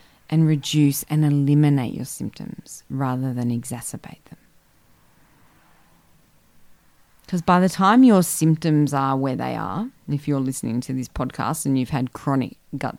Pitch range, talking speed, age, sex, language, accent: 135-165 Hz, 145 wpm, 30-49, female, English, Australian